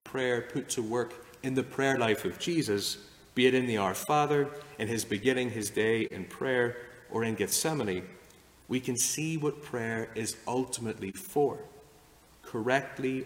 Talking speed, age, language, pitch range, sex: 160 wpm, 40-59, English, 110-135 Hz, male